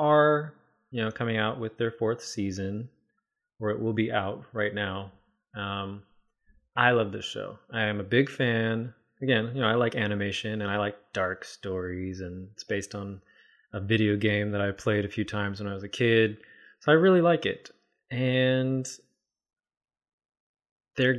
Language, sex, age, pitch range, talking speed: English, male, 20-39, 100-130 Hz, 175 wpm